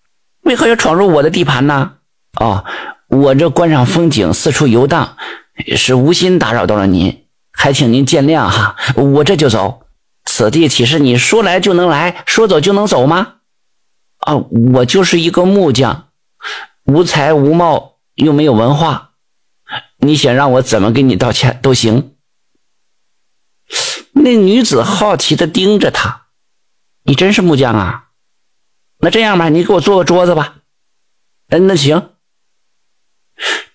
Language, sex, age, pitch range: Chinese, male, 50-69, 130-180 Hz